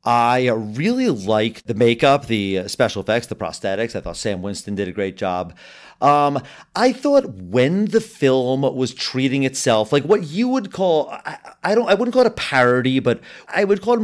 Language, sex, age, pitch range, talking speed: English, male, 40-59, 115-160 Hz, 195 wpm